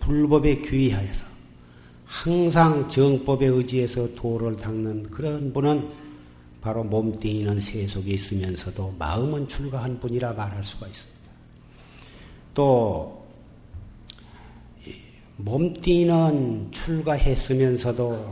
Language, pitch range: Korean, 110-140 Hz